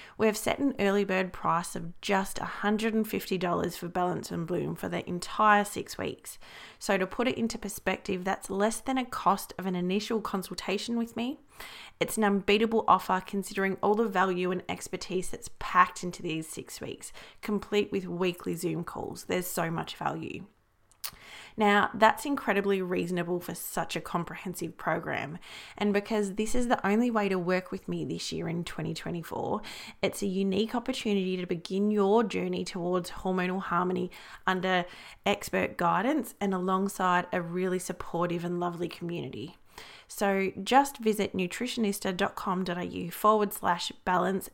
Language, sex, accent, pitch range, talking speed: English, female, Australian, 180-210 Hz, 155 wpm